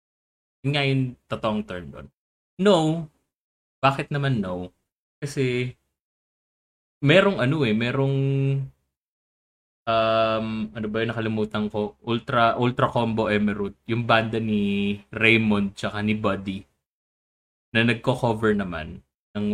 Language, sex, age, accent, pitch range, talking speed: Filipino, male, 20-39, native, 105-135 Hz, 105 wpm